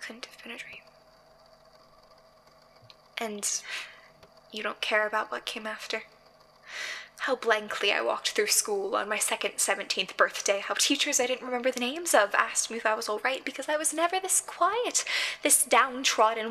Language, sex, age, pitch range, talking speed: English, female, 10-29, 210-295 Hz, 165 wpm